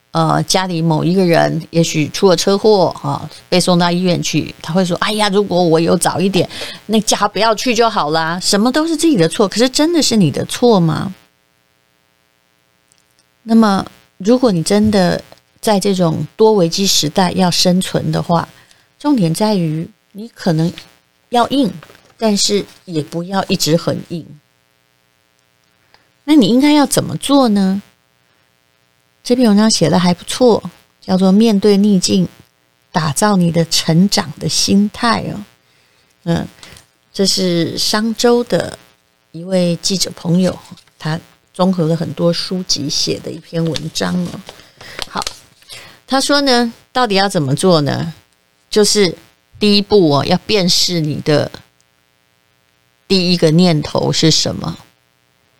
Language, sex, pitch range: Chinese, female, 145-205 Hz